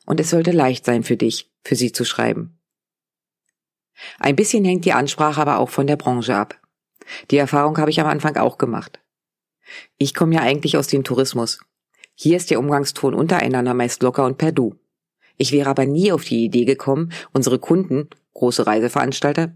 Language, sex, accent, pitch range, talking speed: German, female, German, 130-160 Hz, 180 wpm